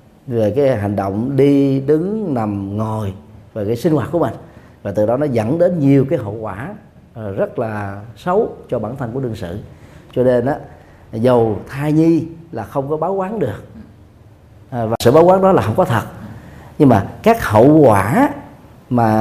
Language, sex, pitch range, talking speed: Vietnamese, male, 110-155 Hz, 185 wpm